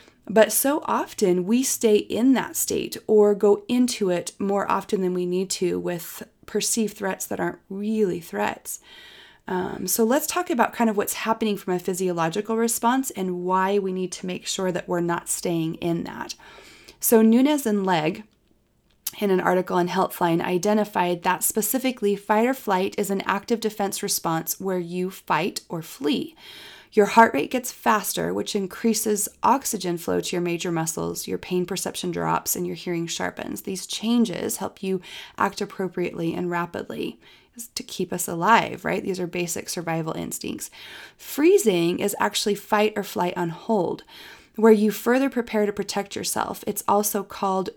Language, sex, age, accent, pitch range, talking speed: English, female, 30-49, American, 180-220 Hz, 165 wpm